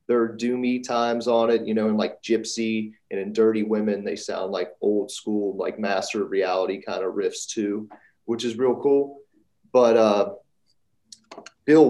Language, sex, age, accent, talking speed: English, male, 30-49, American, 175 wpm